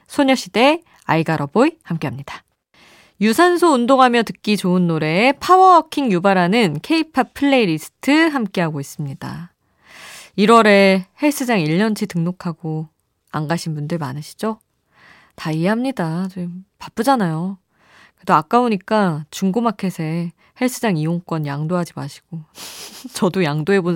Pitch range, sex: 160-240 Hz, female